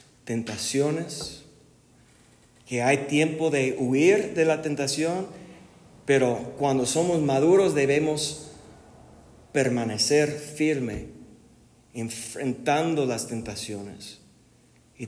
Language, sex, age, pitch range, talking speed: Spanish, male, 40-59, 120-140 Hz, 80 wpm